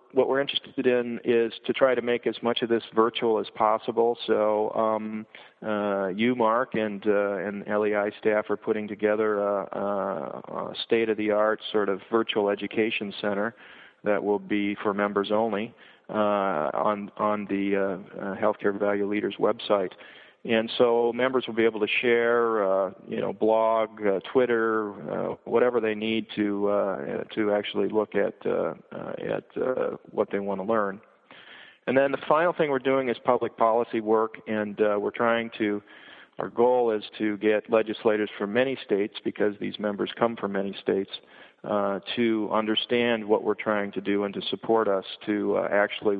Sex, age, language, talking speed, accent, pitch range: male, 40-59, English, 170 wpm, American, 100-115 Hz